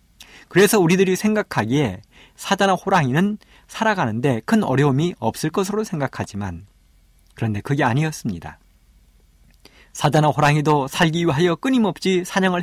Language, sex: Korean, male